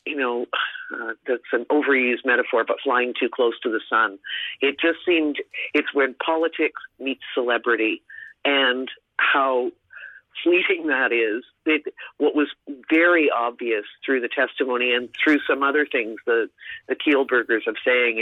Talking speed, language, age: 150 wpm, English, 50-69